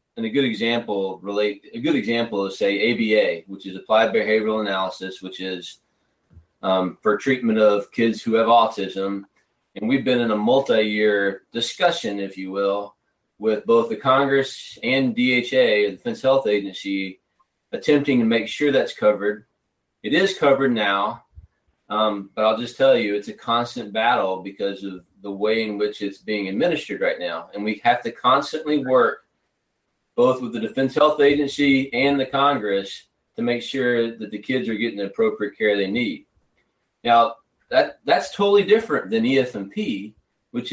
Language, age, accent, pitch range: English, 30-49, American, 105-135 Hz